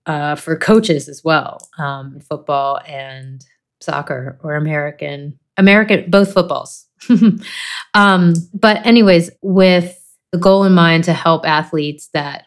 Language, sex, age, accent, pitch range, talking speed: English, female, 30-49, American, 150-180 Hz, 125 wpm